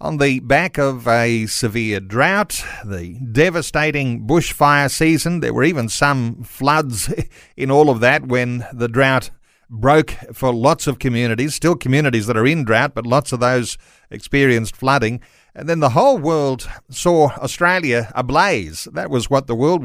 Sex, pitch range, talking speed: male, 120-150 Hz, 160 wpm